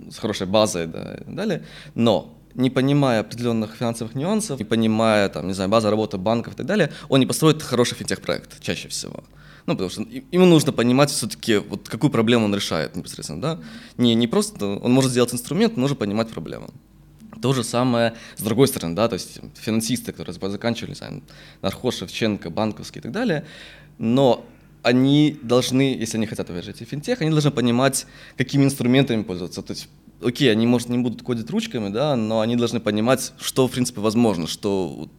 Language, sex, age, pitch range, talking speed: Ukrainian, male, 20-39, 105-130 Hz, 185 wpm